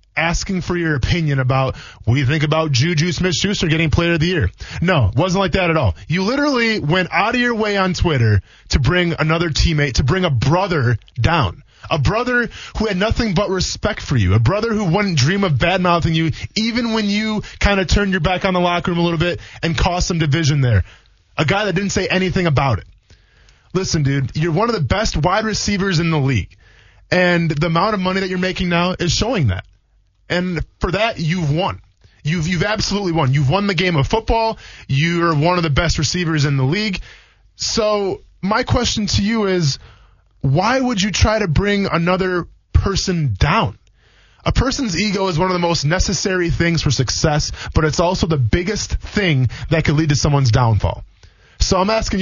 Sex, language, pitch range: male, English, 130-190 Hz